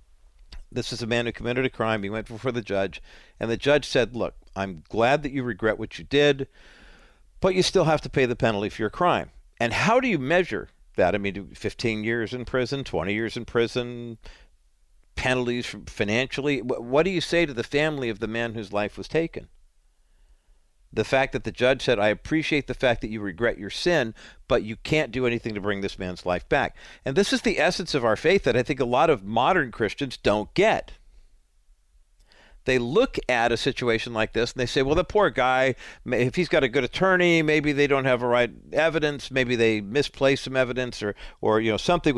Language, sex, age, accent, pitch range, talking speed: English, male, 50-69, American, 110-145 Hz, 215 wpm